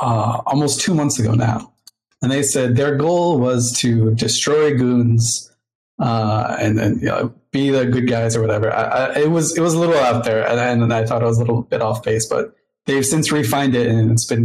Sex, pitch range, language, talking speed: male, 120-150 Hz, English, 235 wpm